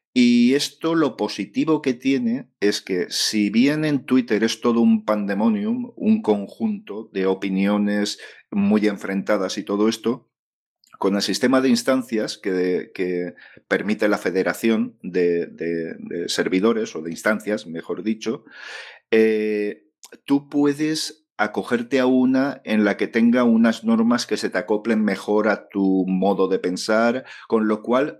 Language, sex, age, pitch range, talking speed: Spanish, male, 40-59, 100-130 Hz, 145 wpm